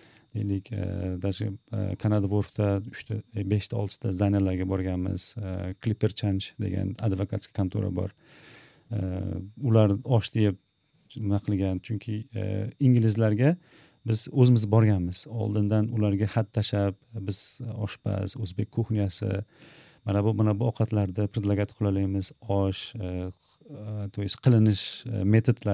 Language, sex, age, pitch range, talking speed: English, male, 40-59, 100-115 Hz, 100 wpm